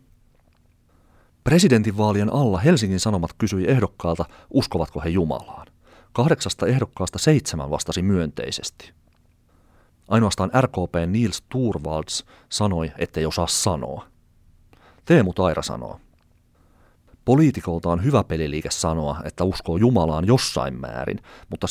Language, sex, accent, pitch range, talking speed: Finnish, male, native, 80-110 Hz, 100 wpm